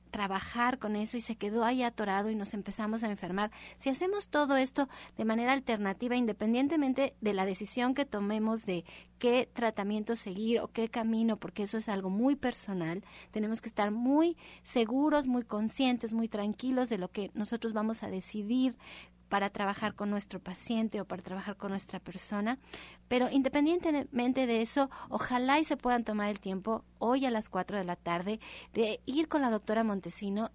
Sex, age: female, 30-49